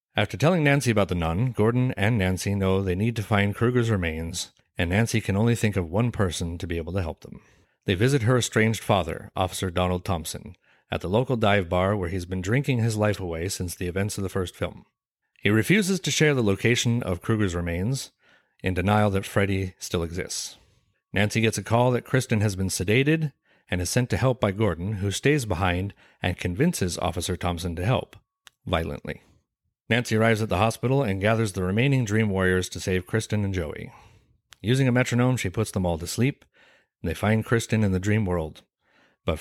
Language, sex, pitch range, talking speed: English, male, 90-120 Hz, 200 wpm